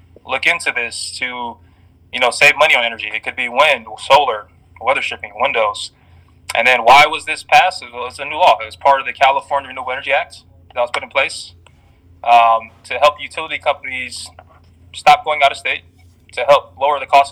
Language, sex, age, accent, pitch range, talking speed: English, male, 20-39, American, 90-140 Hz, 200 wpm